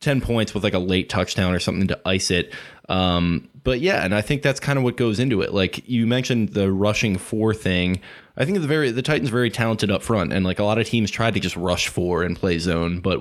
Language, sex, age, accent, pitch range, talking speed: English, male, 20-39, American, 95-110 Hz, 260 wpm